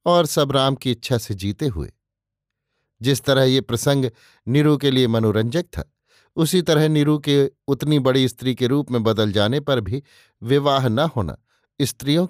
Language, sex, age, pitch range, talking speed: Hindi, male, 50-69, 120-145 Hz, 170 wpm